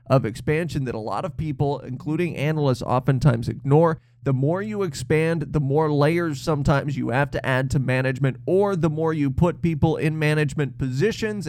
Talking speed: 180 wpm